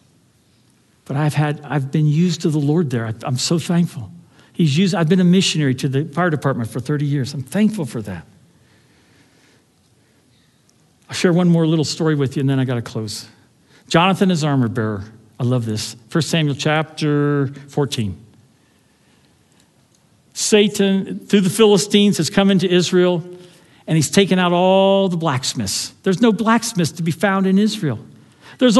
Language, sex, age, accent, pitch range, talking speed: English, male, 60-79, American, 145-215 Hz, 165 wpm